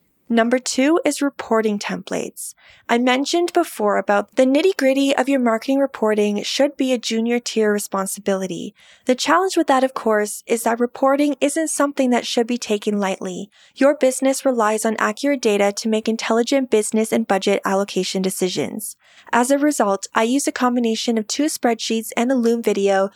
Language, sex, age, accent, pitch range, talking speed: English, female, 20-39, American, 210-265 Hz, 170 wpm